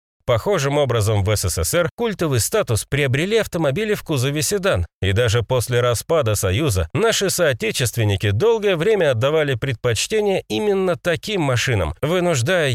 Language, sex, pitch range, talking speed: Russian, male, 110-180 Hz, 120 wpm